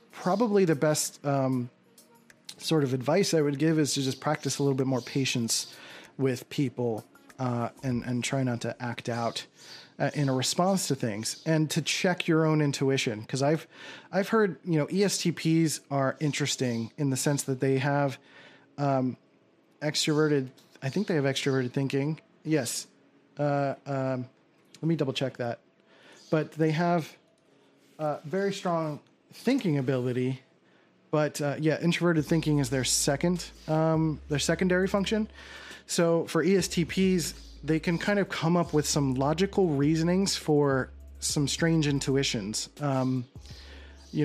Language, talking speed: English, 150 wpm